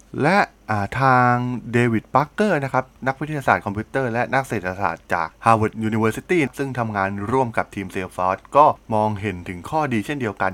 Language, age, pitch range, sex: Thai, 20-39, 95-135 Hz, male